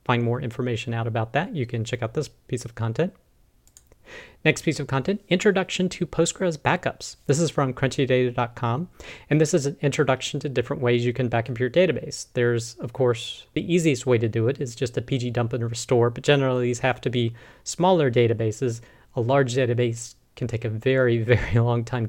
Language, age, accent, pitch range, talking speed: English, 40-59, American, 115-140 Hz, 200 wpm